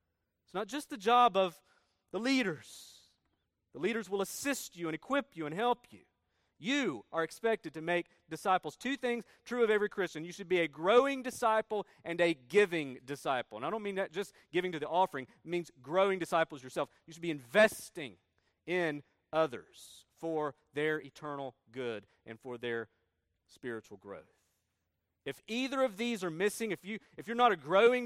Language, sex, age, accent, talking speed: English, male, 40-59, American, 180 wpm